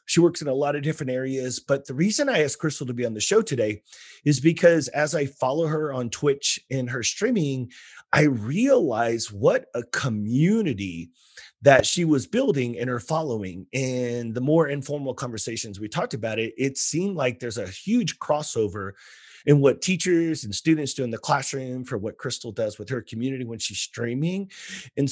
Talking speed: 190 wpm